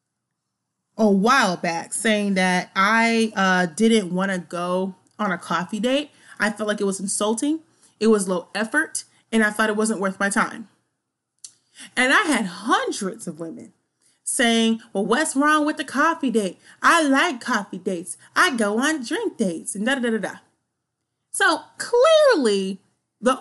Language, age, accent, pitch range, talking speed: English, 30-49, American, 205-275 Hz, 165 wpm